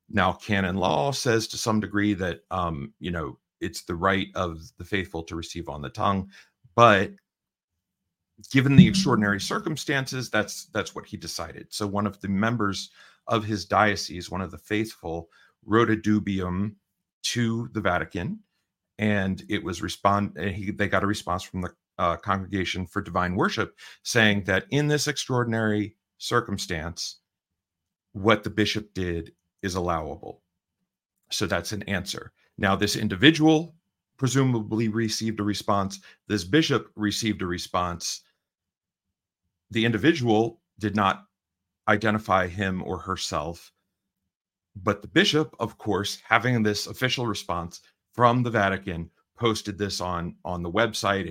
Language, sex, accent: English, male, American